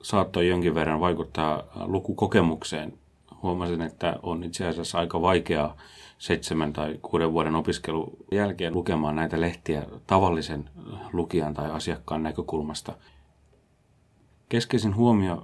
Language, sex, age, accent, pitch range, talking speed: Finnish, male, 30-49, native, 80-95 Hz, 110 wpm